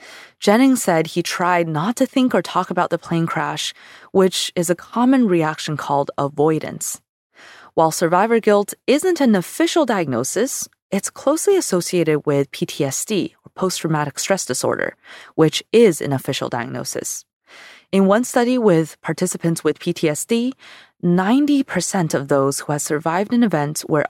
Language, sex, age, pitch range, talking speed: English, female, 20-39, 155-220 Hz, 140 wpm